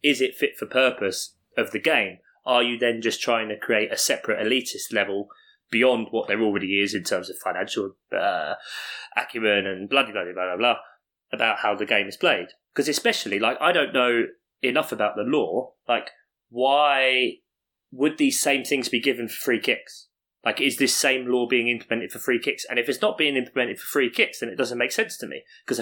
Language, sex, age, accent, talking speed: English, male, 20-39, British, 210 wpm